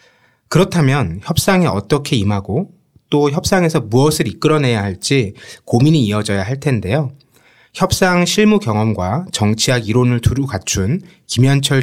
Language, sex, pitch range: Korean, male, 110-155 Hz